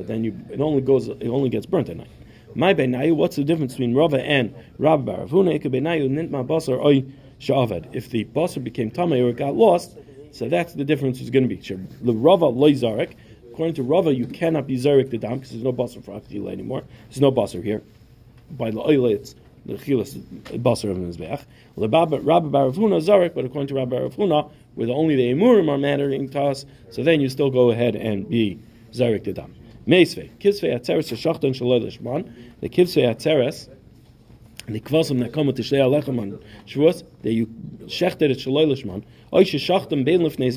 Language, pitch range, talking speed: English, 120-155 Hz, 135 wpm